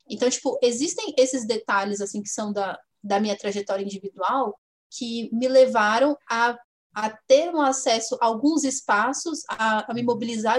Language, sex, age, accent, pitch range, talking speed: Portuguese, female, 10-29, Brazilian, 215-275 Hz, 145 wpm